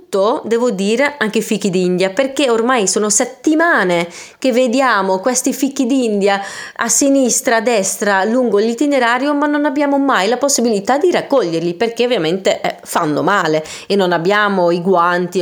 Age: 30-49